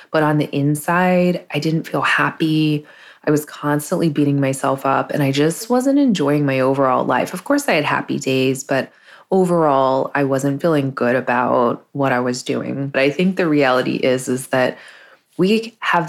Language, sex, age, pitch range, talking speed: English, female, 20-39, 140-165 Hz, 185 wpm